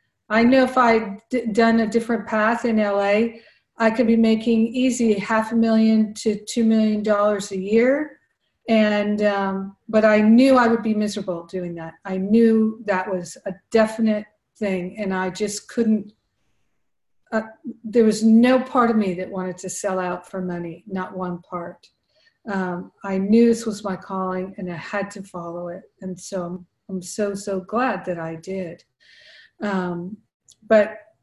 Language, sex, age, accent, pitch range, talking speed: English, female, 50-69, American, 185-220 Hz, 165 wpm